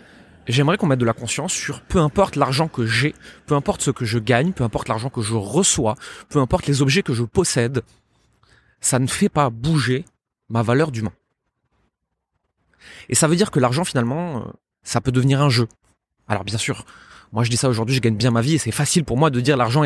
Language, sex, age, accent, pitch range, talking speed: French, male, 20-39, French, 115-150 Hz, 220 wpm